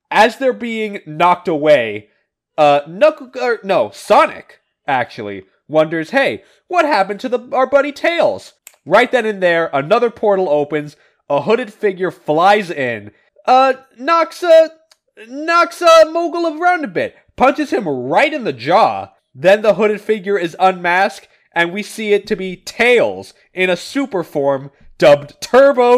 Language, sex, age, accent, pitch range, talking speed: English, male, 20-39, American, 155-255 Hz, 150 wpm